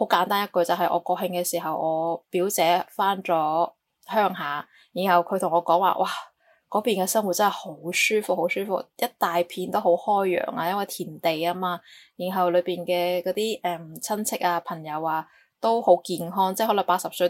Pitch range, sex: 170-195 Hz, female